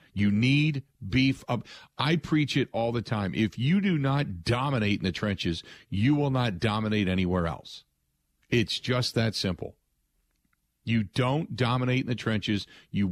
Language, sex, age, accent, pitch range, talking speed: English, male, 50-69, American, 100-130 Hz, 160 wpm